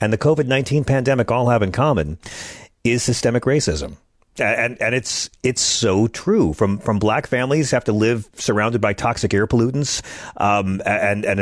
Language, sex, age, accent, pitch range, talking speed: English, male, 40-59, American, 100-130 Hz, 170 wpm